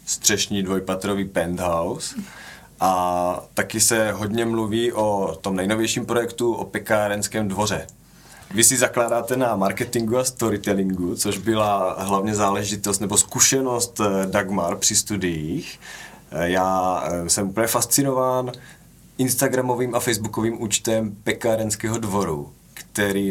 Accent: native